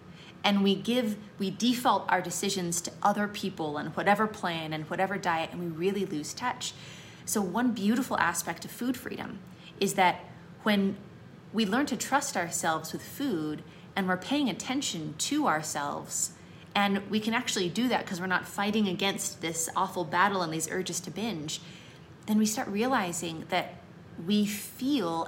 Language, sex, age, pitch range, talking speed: English, female, 30-49, 175-230 Hz, 165 wpm